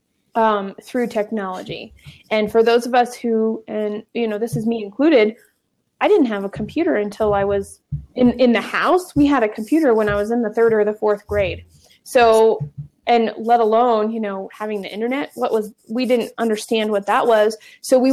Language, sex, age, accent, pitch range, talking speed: English, female, 20-39, American, 210-250 Hz, 200 wpm